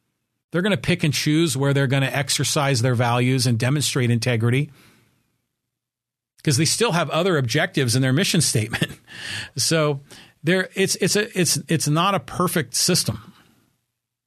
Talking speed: 155 wpm